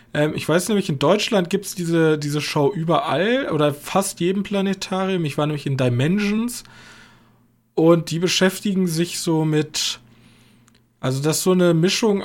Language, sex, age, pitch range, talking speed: German, male, 20-39, 130-170 Hz, 150 wpm